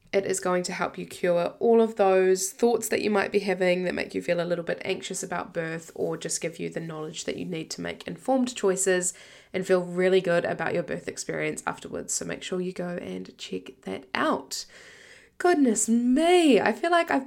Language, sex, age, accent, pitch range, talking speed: English, female, 10-29, Australian, 170-210 Hz, 220 wpm